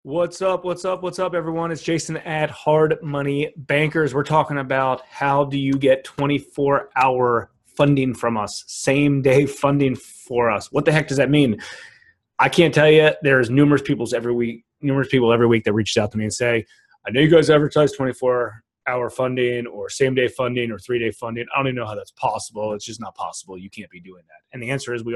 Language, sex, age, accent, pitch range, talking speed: English, male, 30-49, American, 120-155 Hz, 215 wpm